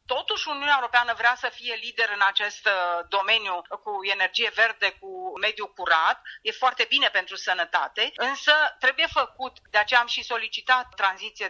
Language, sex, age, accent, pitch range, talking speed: Romanian, female, 40-59, native, 215-295 Hz, 155 wpm